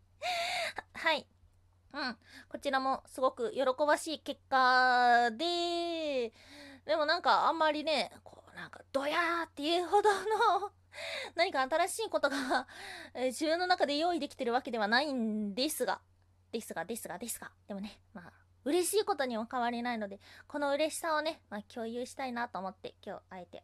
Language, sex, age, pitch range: Japanese, female, 20-39, 215-320 Hz